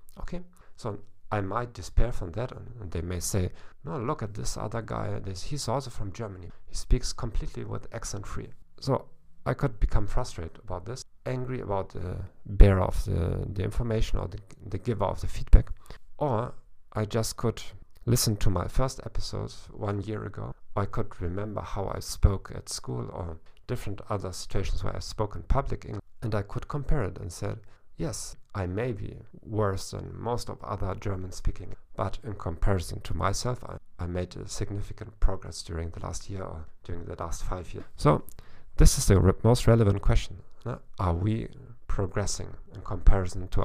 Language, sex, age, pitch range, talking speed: English, male, 50-69, 95-115 Hz, 180 wpm